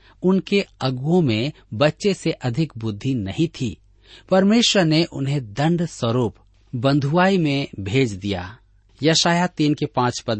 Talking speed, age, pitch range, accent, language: 135 wpm, 50-69, 110-165 Hz, native, Hindi